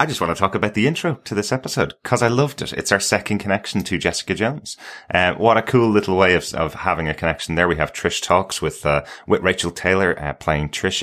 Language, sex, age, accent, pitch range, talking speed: English, male, 30-49, British, 75-85 Hz, 250 wpm